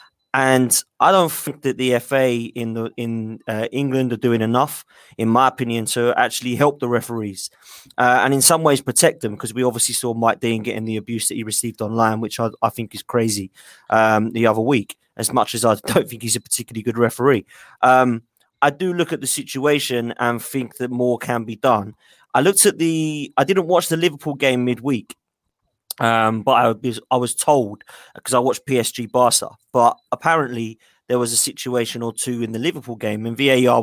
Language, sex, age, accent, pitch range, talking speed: English, male, 20-39, British, 115-130 Hz, 200 wpm